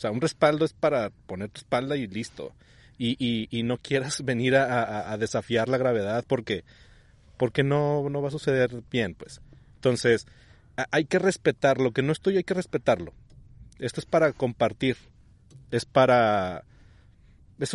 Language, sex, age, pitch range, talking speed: Spanish, male, 30-49, 110-135 Hz, 170 wpm